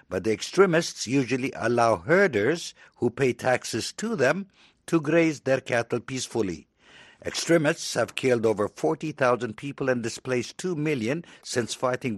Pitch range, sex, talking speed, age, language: 115-150 Hz, male, 140 wpm, 60-79, English